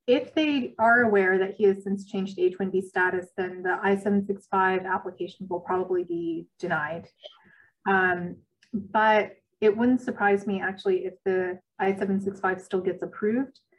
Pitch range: 180-210 Hz